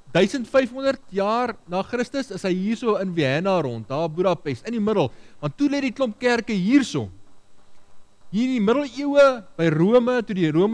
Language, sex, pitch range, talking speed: English, male, 145-240 Hz, 175 wpm